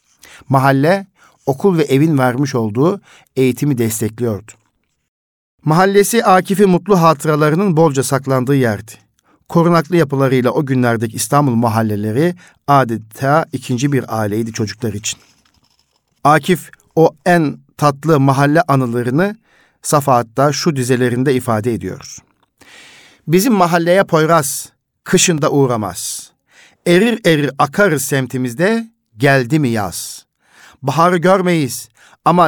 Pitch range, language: 120-165 Hz, Turkish